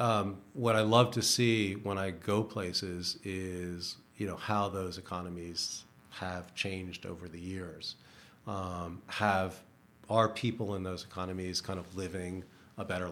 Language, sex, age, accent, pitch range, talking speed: English, male, 40-59, American, 90-100 Hz, 155 wpm